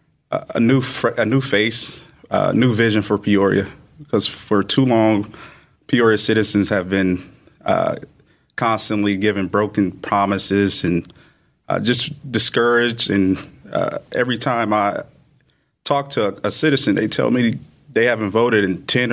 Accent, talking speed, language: American, 140 wpm, English